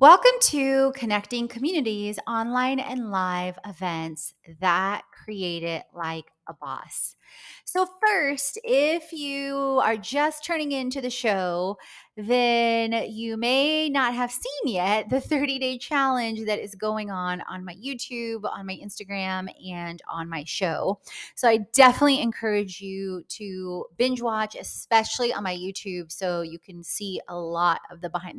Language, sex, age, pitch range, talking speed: English, female, 30-49, 185-260 Hz, 150 wpm